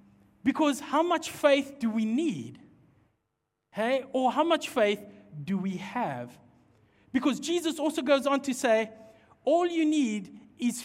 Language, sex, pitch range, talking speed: English, male, 195-285 Hz, 145 wpm